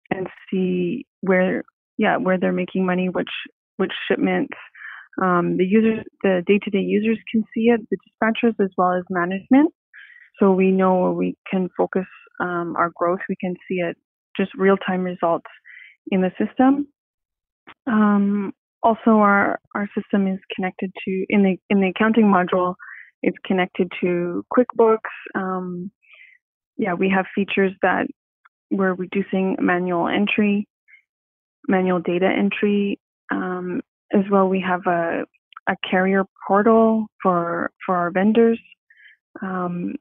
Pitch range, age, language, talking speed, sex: 180-210 Hz, 20-39, English, 140 wpm, female